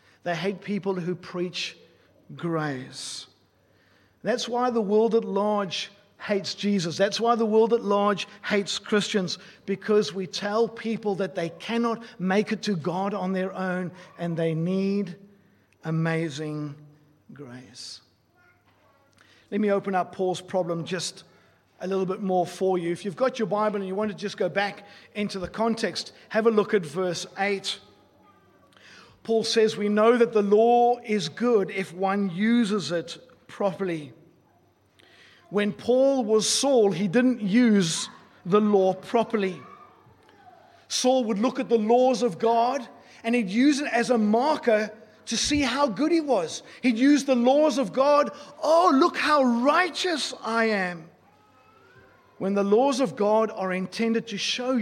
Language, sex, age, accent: English, male, 50-69, Australian